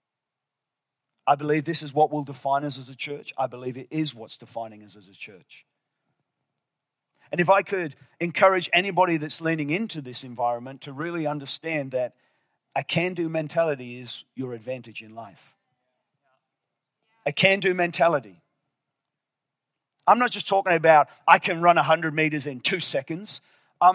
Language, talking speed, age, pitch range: English, 155 wpm, 40-59, 140-175 Hz